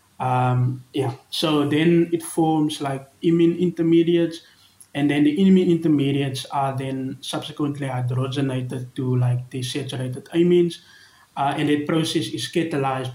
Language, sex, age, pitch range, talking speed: English, male, 20-39, 130-160 Hz, 130 wpm